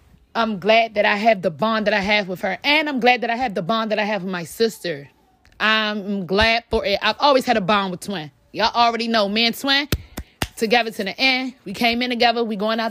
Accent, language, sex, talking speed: American, English, female, 250 wpm